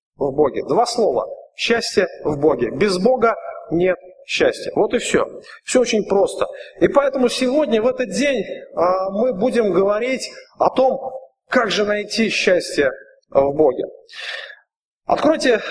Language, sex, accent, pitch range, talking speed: Russian, male, native, 205-290 Hz, 135 wpm